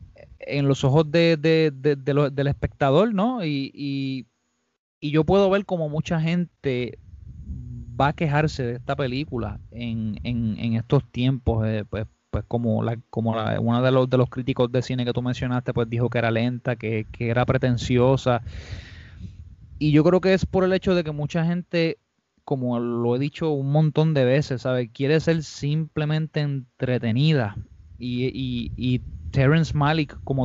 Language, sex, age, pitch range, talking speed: Spanish, male, 20-39, 120-155 Hz, 175 wpm